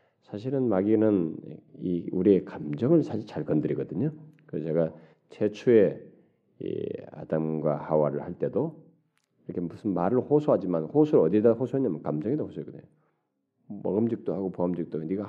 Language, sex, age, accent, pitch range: Korean, male, 40-59, native, 90-125 Hz